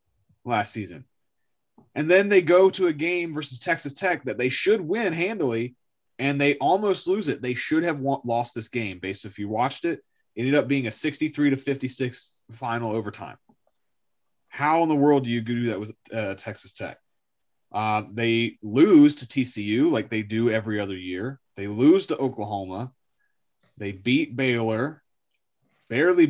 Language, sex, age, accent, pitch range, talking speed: English, male, 30-49, American, 105-140 Hz, 170 wpm